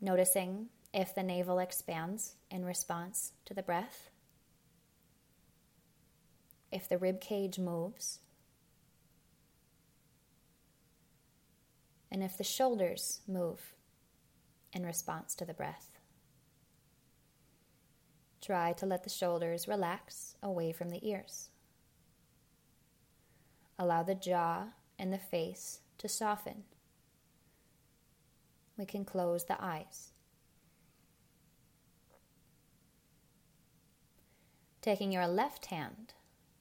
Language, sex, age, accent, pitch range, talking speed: English, female, 20-39, American, 175-200 Hz, 85 wpm